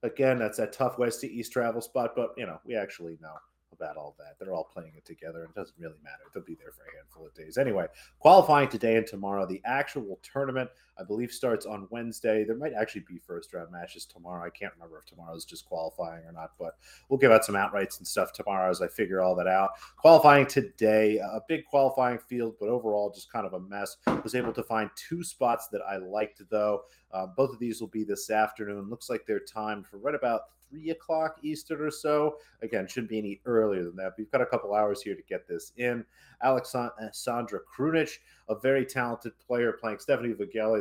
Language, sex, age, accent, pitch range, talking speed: English, male, 30-49, American, 100-125 Hz, 220 wpm